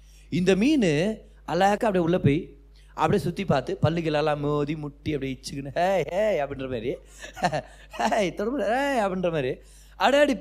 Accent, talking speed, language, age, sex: native, 120 wpm, Tamil, 30-49, male